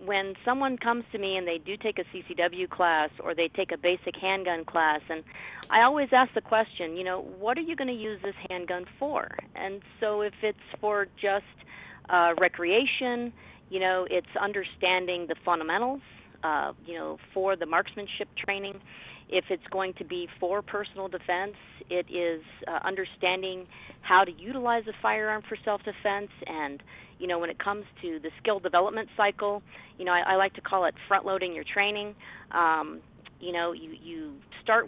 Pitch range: 175-215 Hz